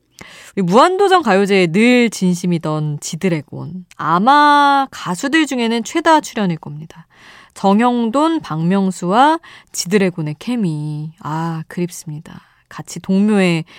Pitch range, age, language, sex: 165-235 Hz, 20-39, Korean, female